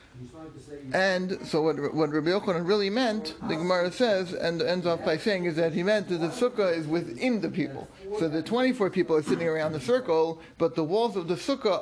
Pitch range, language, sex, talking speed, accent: 165-215 Hz, English, male, 215 wpm, American